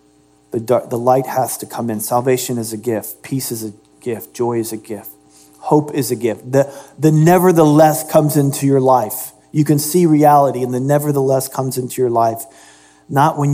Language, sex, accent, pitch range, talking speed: English, male, American, 115-155 Hz, 190 wpm